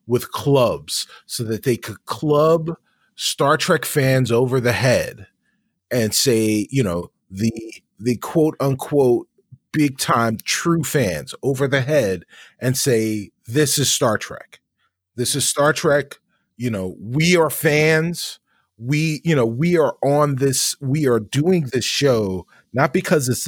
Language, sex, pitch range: English, male, 115-150 Hz